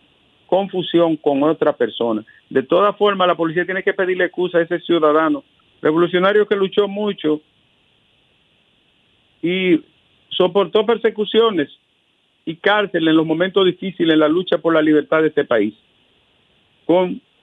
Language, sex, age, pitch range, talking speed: Spanish, male, 50-69, 155-195 Hz, 135 wpm